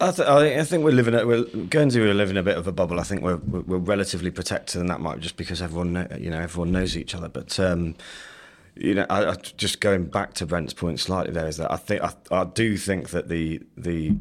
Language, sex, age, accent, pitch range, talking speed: English, male, 30-49, British, 80-95 Hz, 260 wpm